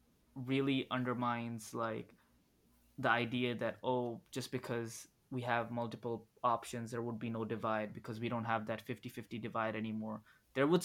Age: 20-39